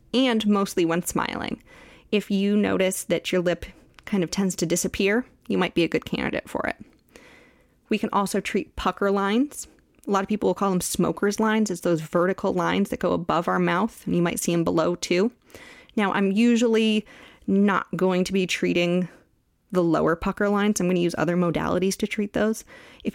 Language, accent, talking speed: English, American, 195 wpm